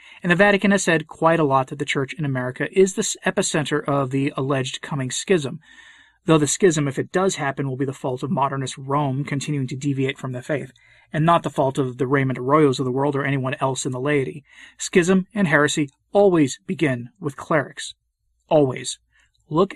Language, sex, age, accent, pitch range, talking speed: English, male, 30-49, American, 140-195 Hz, 205 wpm